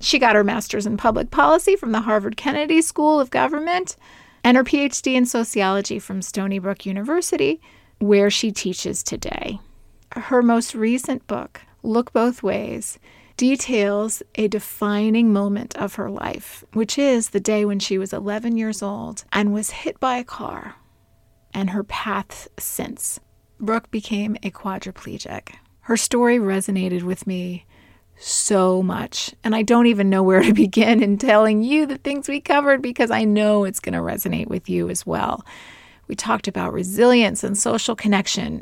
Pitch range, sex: 195-240 Hz, female